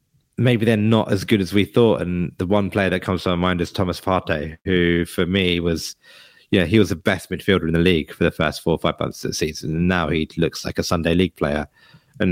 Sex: male